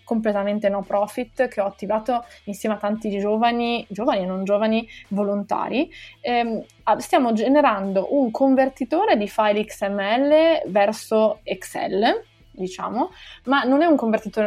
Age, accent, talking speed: 20-39, native, 130 wpm